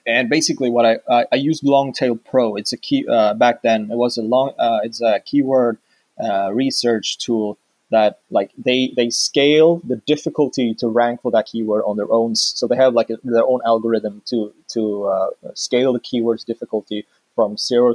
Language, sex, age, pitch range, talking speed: English, male, 20-39, 115-140 Hz, 195 wpm